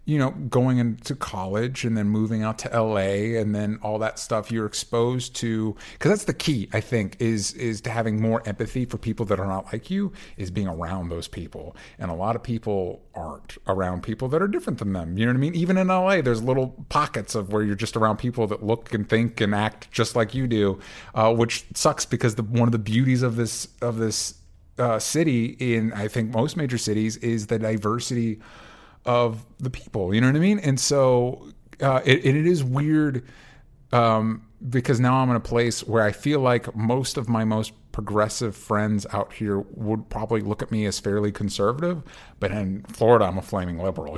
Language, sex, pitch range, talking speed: English, male, 110-130 Hz, 215 wpm